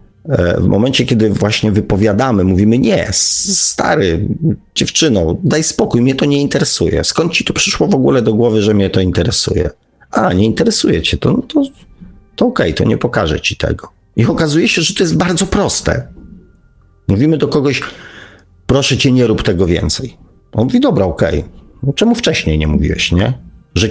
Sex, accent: male, native